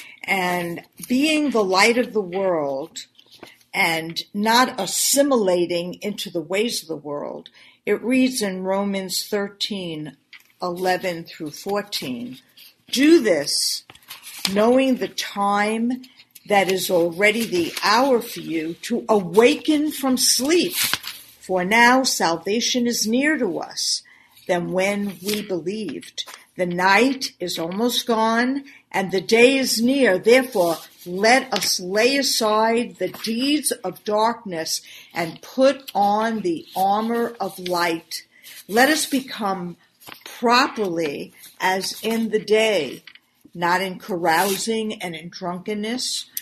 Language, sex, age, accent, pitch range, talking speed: English, female, 50-69, American, 180-245 Hz, 120 wpm